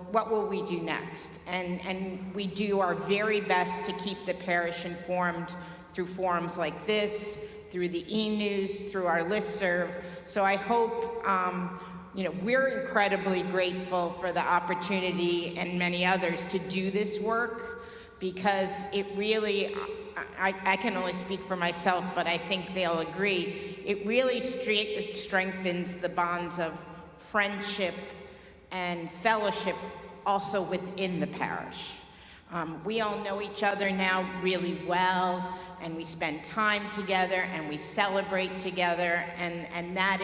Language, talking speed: English, 145 wpm